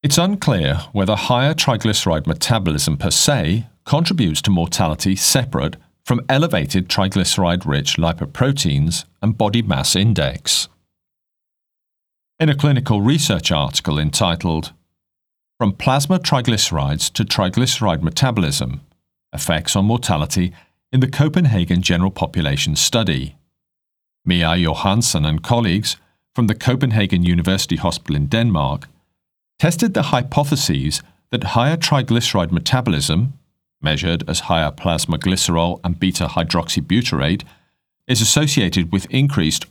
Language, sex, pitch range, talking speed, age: English, male, 85-120 Hz, 105 wpm, 40-59